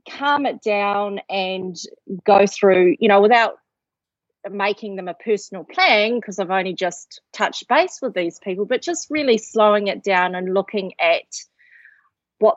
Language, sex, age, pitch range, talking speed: English, female, 30-49, 185-220 Hz, 160 wpm